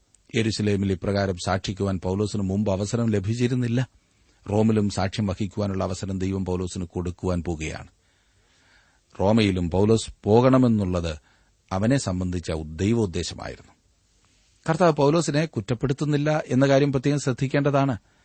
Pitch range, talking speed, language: 95-120 Hz, 90 wpm, Malayalam